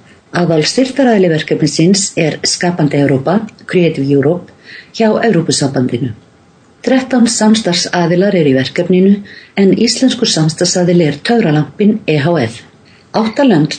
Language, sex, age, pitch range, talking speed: English, female, 50-69, 155-215 Hz, 95 wpm